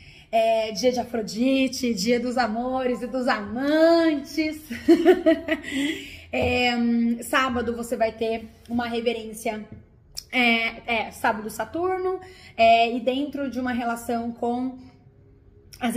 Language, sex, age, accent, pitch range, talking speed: Portuguese, female, 20-39, Brazilian, 220-260 Hz, 90 wpm